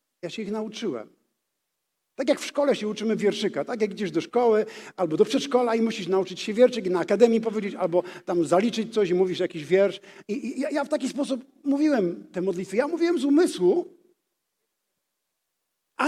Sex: male